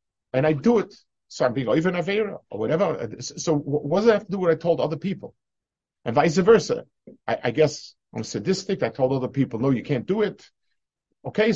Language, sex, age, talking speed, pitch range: English, male, 50-69, 225 wpm, 135-185 Hz